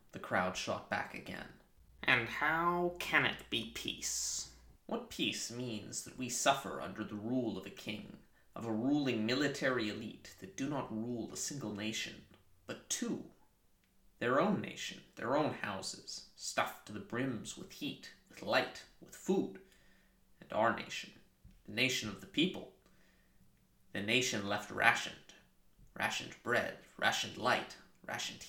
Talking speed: 145 wpm